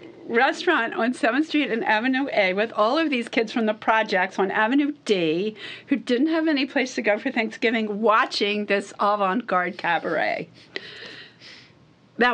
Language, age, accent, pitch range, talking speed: English, 50-69, American, 195-250 Hz, 155 wpm